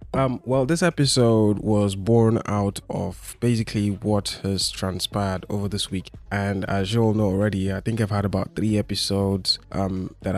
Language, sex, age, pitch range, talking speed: English, male, 20-39, 95-110 Hz, 175 wpm